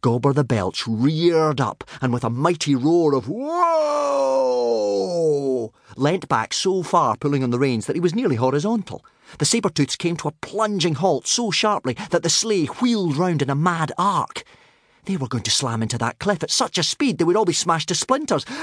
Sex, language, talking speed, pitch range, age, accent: male, English, 200 wpm, 115-190 Hz, 30-49, British